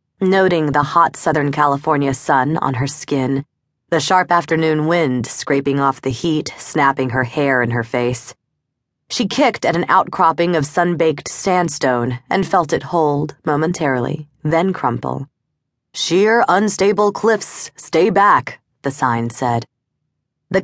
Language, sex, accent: English, female, American